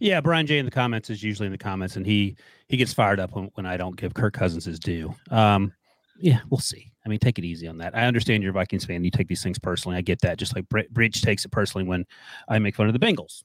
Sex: male